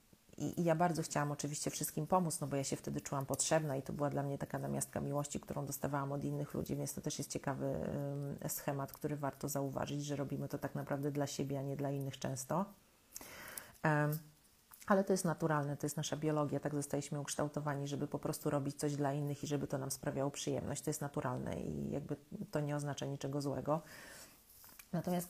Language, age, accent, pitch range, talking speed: Polish, 30-49, native, 145-160 Hz, 195 wpm